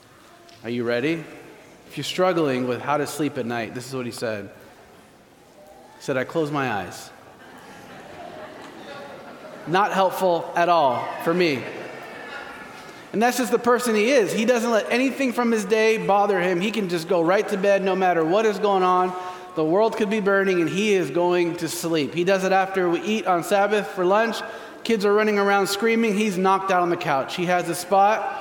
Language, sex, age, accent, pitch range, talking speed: English, male, 30-49, American, 170-210 Hz, 200 wpm